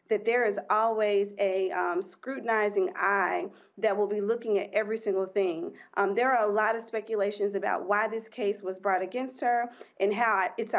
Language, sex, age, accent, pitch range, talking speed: English, female, 40-59, American, 200-250 Hz, 190 wpm